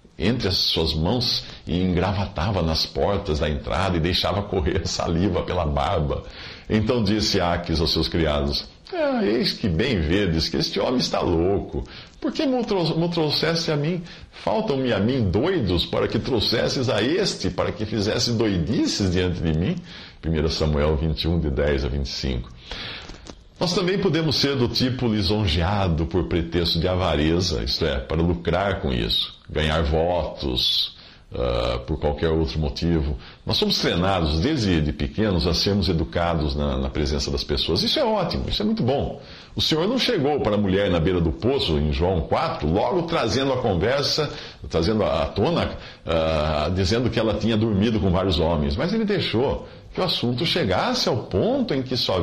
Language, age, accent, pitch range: Portuguese, 50-69, Brazilian, 80-105 Hz